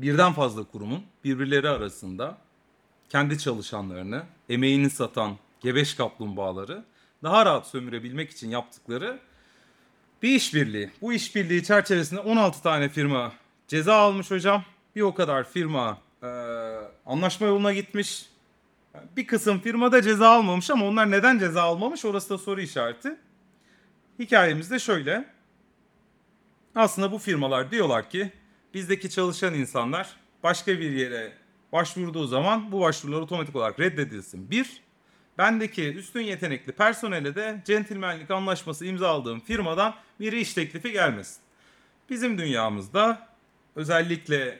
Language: Turkish